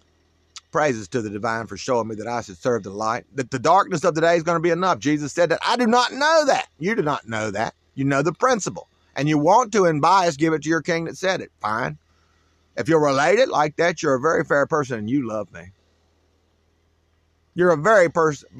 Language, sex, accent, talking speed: English, male, American, 240 wpm